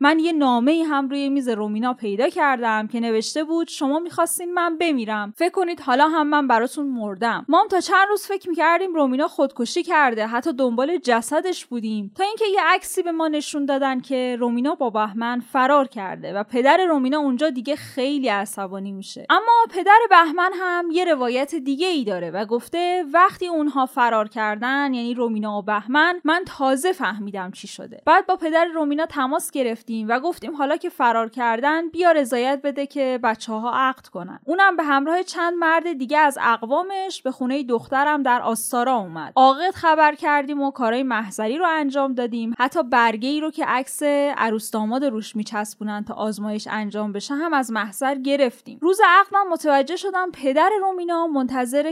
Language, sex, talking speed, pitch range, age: Persian, female, 175 wpm, 230-325 Hz, 10-29